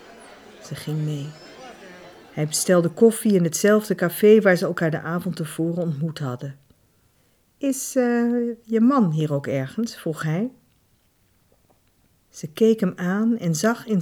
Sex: female